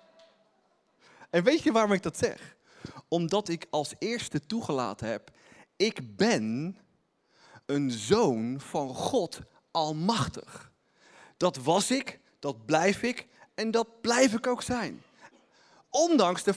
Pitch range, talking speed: 175-245 Hz, 125 wpm